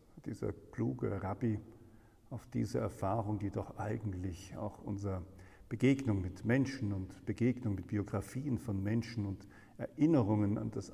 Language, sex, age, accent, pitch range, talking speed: German, male, 50-69, German, 95-125 Hz, 130 wpm